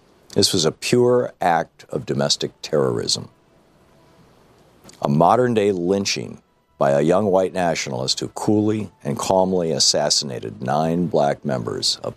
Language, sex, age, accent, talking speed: English, male, 50-69, American, 125 wpm